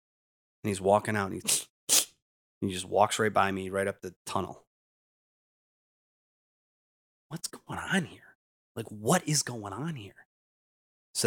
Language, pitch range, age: English, 90-120 Hz, 30-49